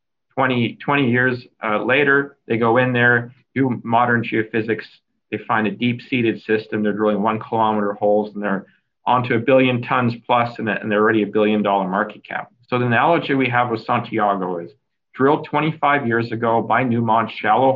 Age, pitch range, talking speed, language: 40-59, 110-130 Hz, 175 wpm, English